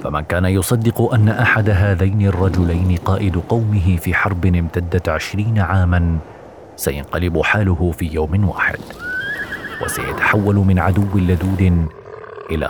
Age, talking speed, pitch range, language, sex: 40-59, 115 wpm, 90-105 Hz, Arabic, male